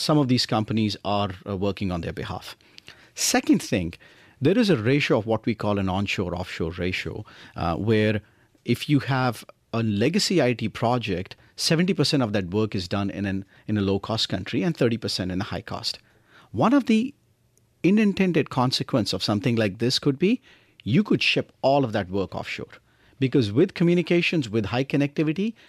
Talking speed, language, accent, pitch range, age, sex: 180 wpm, English, Indian, 100-145 Hz, 50-69, male